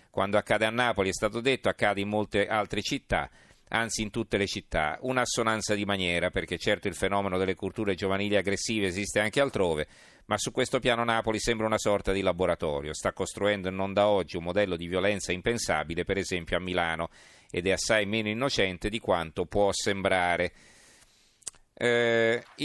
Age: 40-59